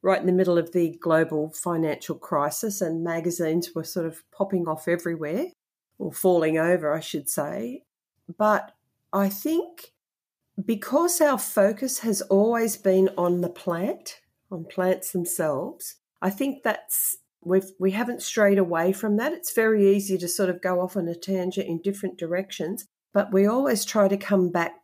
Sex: female